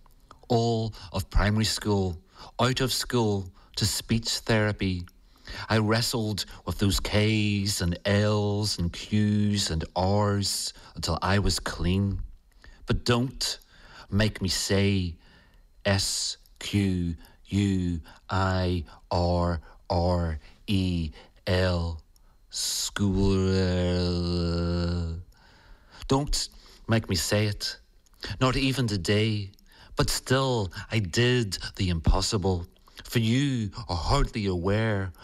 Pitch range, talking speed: 90-115 Hz, 85 wpm